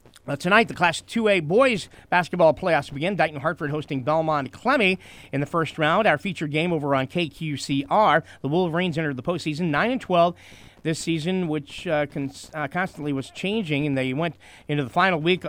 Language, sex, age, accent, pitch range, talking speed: English, male, 40-59, American, 135-170 Hz, 185 wpm